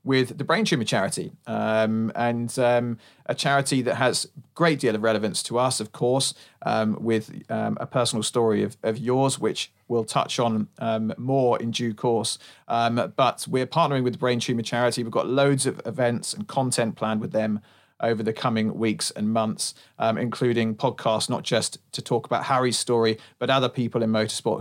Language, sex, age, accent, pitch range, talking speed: English, male, 40-59, British, 110-145 Hz, 195 wpm